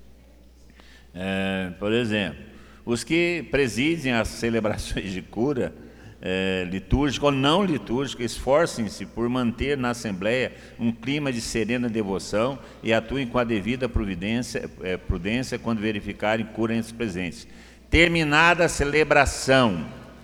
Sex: male